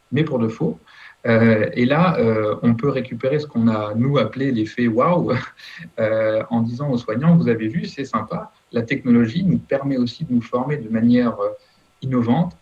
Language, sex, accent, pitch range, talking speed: French, male, French, 115-145 Hz, 180 wpm